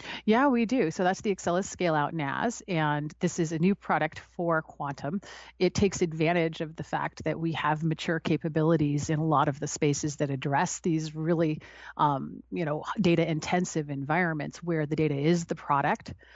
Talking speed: 190 wpm